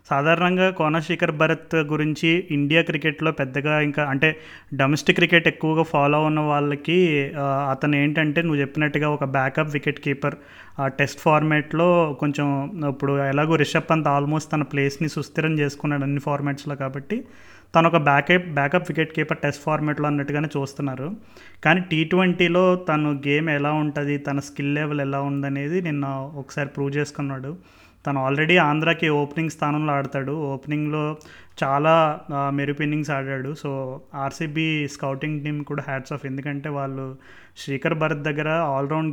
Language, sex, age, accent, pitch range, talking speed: Telugu, male, 30-49, native, 140-160 Hz, 135 wpm